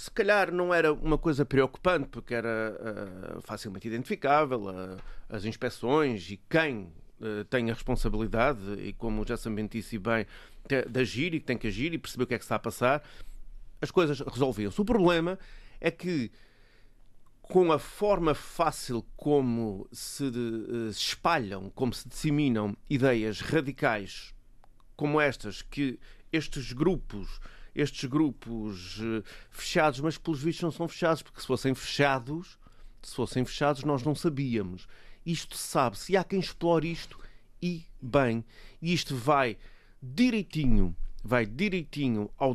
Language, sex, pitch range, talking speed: Portuguese, male, 115-160 Hz, 140 wpm